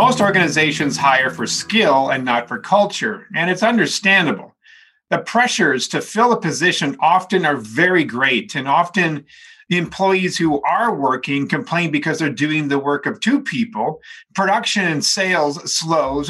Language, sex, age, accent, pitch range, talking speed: English, male, 50-69, American, 145-205 Hz, 155 wpm